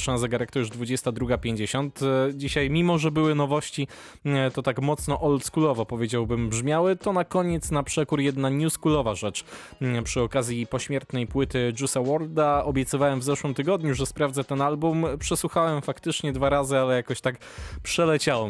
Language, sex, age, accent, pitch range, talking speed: Polish, male, 20-39, native, 105-140 Hz, 145 wpm